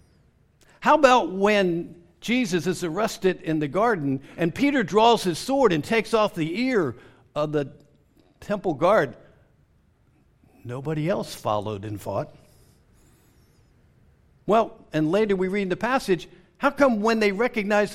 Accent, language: American, English